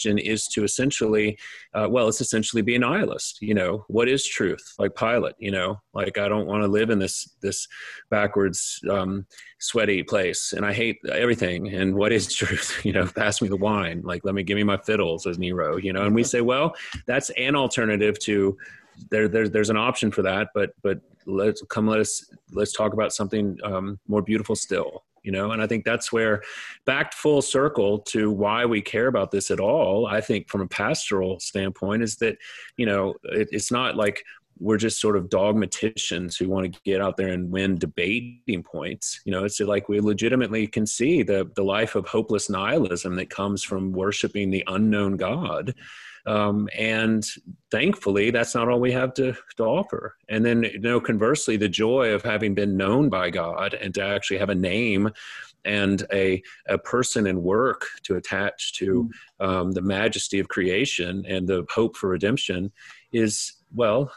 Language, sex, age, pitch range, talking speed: English, male, 30-49, 95-115 Hz, 195 wpm